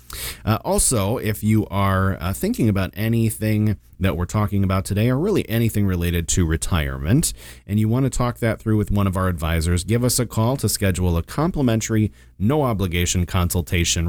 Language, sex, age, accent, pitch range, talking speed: English, male, 30-49, American, 90-115 Hz, 185 wpm